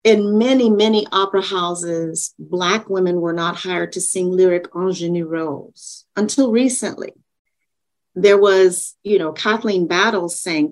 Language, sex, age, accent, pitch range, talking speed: English, female, 40-59, American, 175-220 Hz, 135 wpm